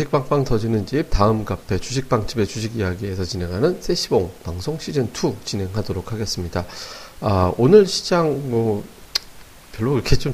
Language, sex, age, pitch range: Korean, male, 40-59, 95-130 Hz